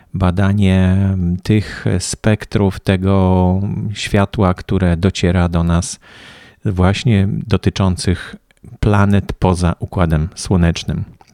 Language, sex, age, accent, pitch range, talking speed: Polish, male, 40-59, native, 85-105 Hz, 80 wpm